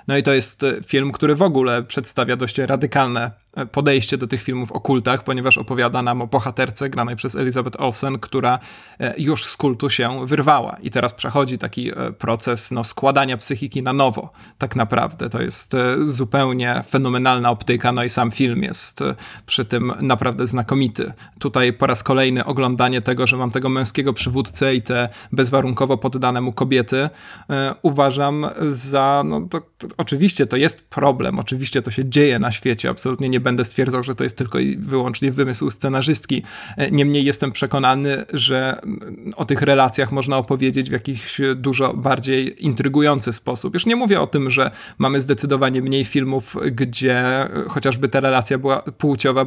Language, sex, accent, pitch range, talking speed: Polish, male, native, 125-140 Hz, 160 wpm